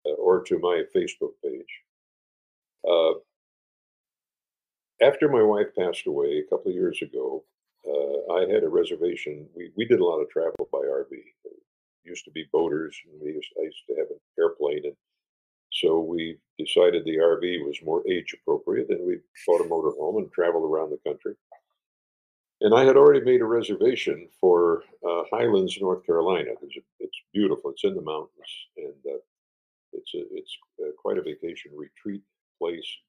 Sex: male